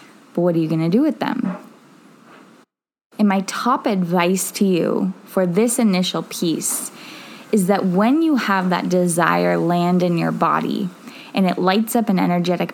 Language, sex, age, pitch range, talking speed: English, female, 20-39, 175-230 Hz, 165 wpm